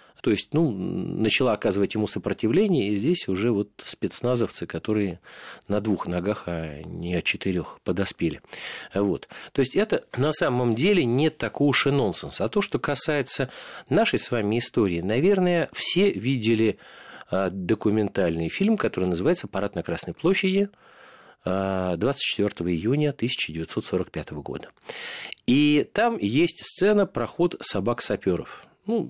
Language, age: Russian, 40-59